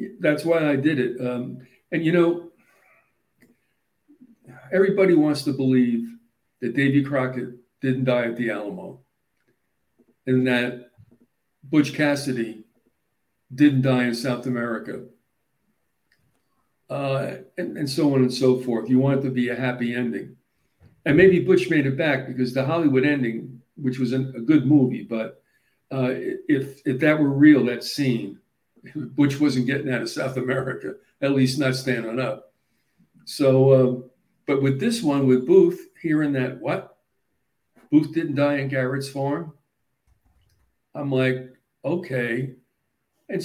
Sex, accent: male, American